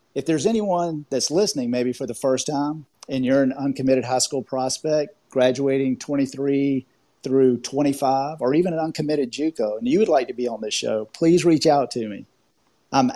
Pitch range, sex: 125-150 Hz, male